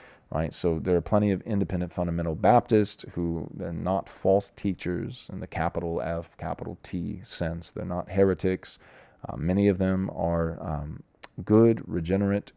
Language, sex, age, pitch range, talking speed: English, male, 30-49, 85-100 Hz, 160 wpm